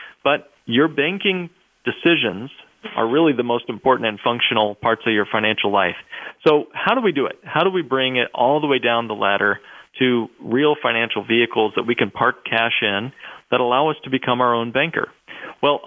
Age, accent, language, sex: 40-59, American, English, male